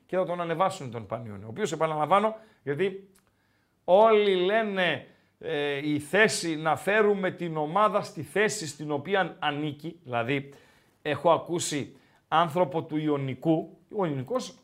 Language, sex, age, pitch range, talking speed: Greek, male, 40-59, 145-205 Hz, 130 wpm